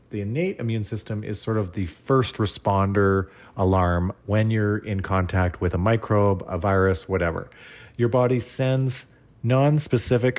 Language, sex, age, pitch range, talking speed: English, male, 30-49, 95-120 Hz, 145 wpm